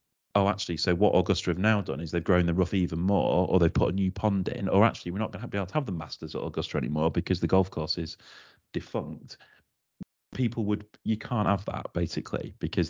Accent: British